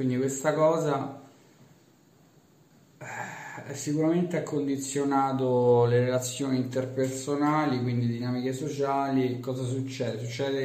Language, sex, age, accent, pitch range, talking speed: Italian, male, 20-39, native, 110-130 Hz, 95 wpm